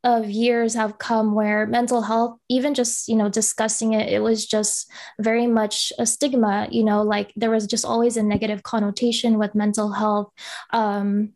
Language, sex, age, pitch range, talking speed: English, female, 10-29, 210-240 Hz, 180 wpm